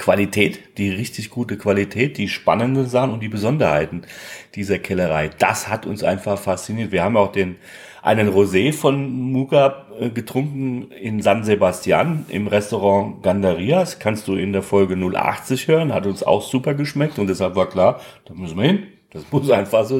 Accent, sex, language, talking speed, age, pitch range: German, male, German, 170 wpm, 40-59, 100-135 Hz